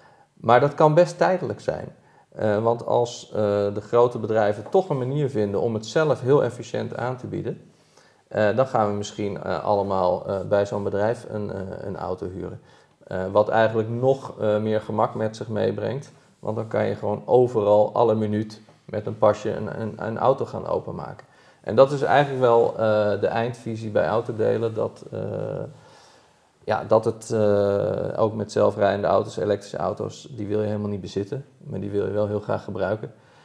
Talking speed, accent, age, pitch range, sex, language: 180 wpm, Dutch, 40-59, 105-120 Hz, male, Dutch